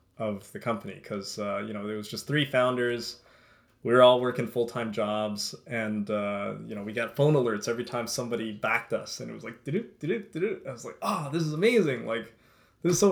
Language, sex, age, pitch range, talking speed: English, male, 20-39, 110-130 Hz, 220 wpm